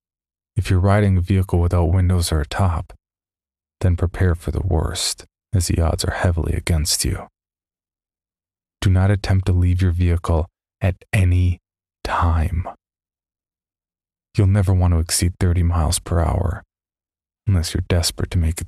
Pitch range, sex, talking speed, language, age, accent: 85-95 Hz, male, 150 wpm, English, 20-39, American